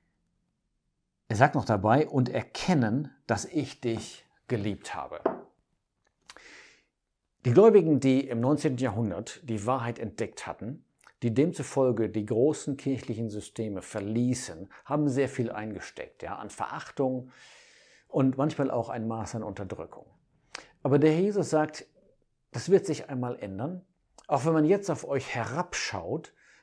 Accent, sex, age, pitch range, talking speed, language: German, male, 50-69, 105-135 Hz, 130 wpm, German